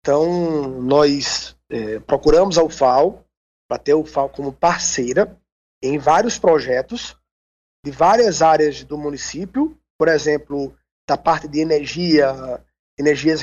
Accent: Brazilian